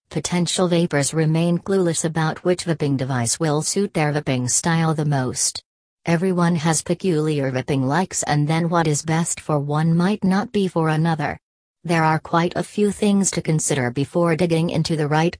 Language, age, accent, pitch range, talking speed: English, 40-59, American, 145-175 Hz, 175 wpm